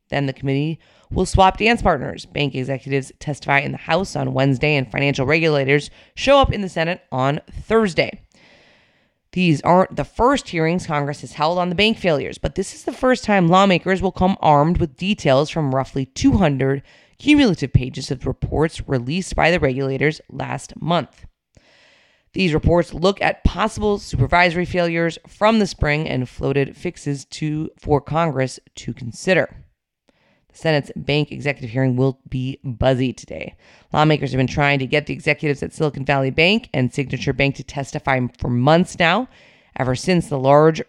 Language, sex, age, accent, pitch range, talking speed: English, female, 30-49, American, 135-175 Hz, 165 wpm